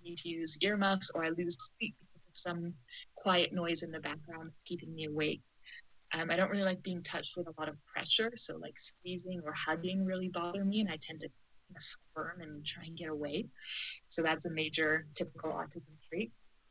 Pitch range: 160-185 Hz